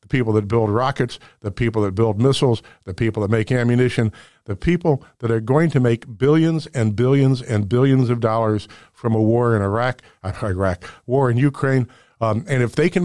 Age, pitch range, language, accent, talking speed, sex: 50-69, 115-145 Hz, English, American, 195 wpm, male